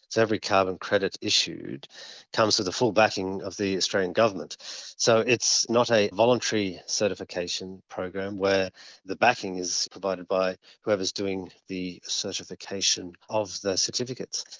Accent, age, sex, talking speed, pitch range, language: Australian, 40-59, male, 140 wpm, 95-120 Hz, English